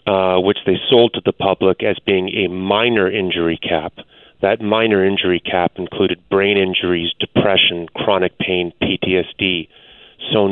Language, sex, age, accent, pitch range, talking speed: English, male, 40-59, American, 90-110 Hz, 145 wpm